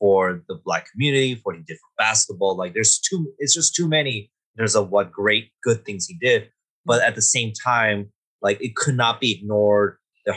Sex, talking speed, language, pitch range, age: male, 215 wpm, English, 105-150 Hz, 30-49